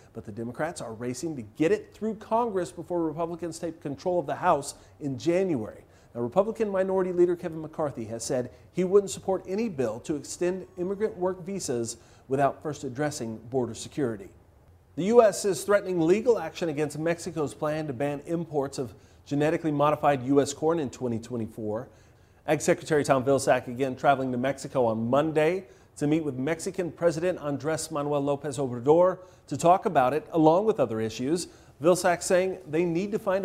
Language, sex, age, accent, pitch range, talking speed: English, male, 40-59, American, 135-180 Hz, 170 wpm